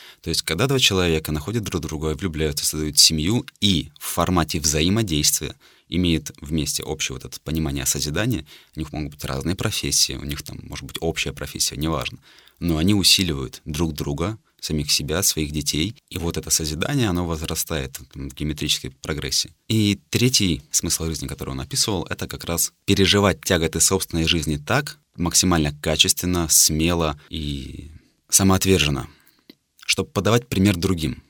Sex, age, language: male, 30-49, Russian